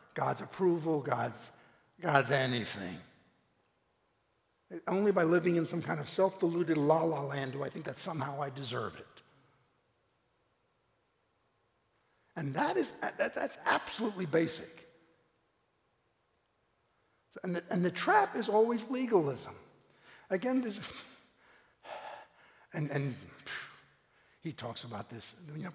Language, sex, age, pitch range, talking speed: English, male, 60-79, 145-210 Hz, 115 wpm